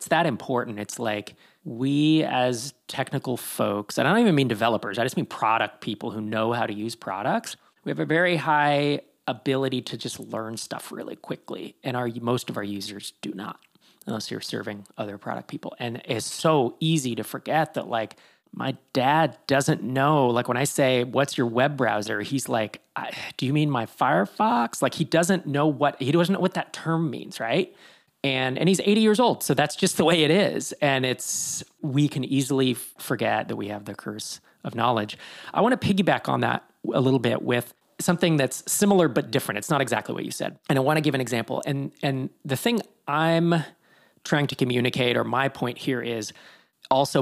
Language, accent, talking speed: English, American, 205 wpm